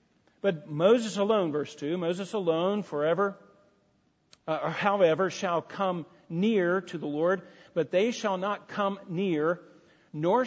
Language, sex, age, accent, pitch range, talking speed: English, male, 50-69, American, 160-215 Hz, 140 wpm